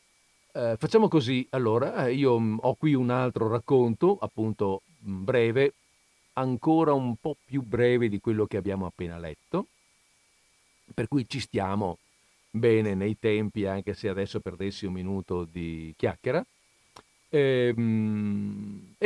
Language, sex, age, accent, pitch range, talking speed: Italian, male, 50-69, native, 100-125 Hz, 130 wpm